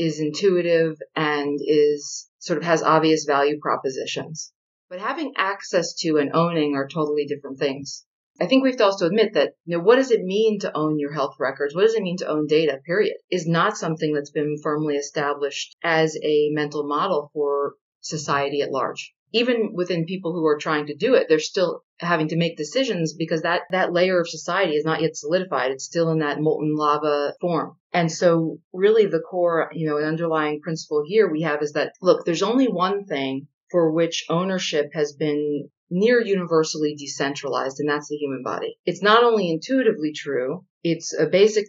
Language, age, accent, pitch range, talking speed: English, 40-59, American, 150-180 Hz, 195 wpm